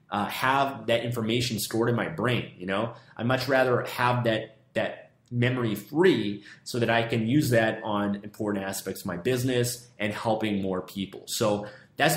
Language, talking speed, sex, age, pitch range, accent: English, 180 wpm, male, 30-49, 105-125 Hz, American